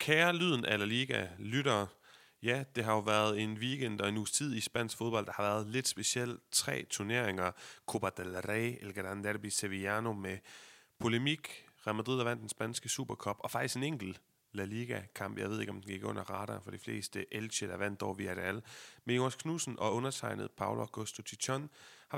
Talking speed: 200 wpm